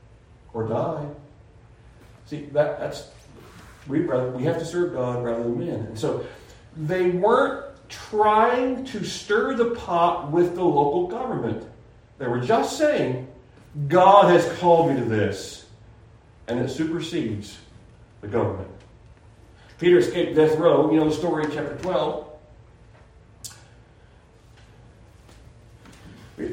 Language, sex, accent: English, male, American